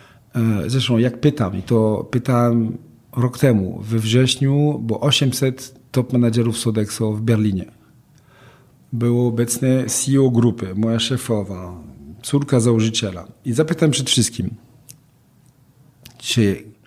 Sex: male